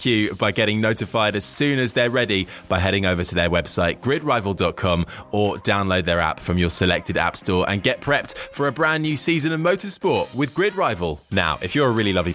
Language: English